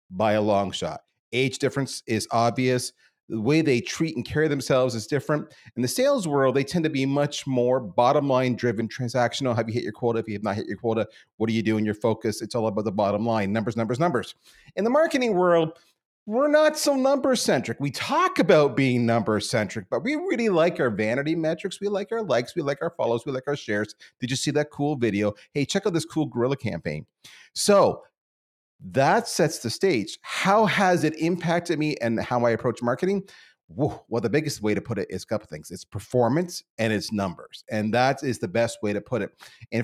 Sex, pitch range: male, 110-150 Hz